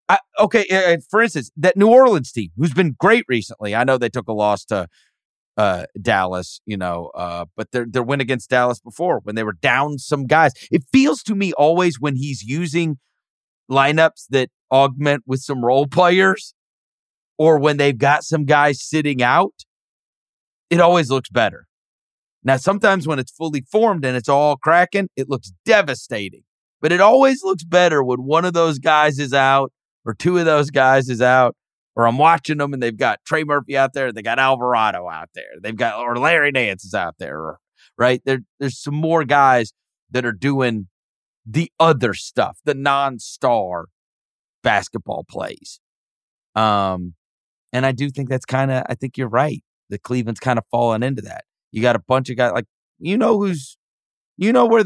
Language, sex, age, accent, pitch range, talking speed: English, male, 30-49, American, 125-165 Hz, 185 wpm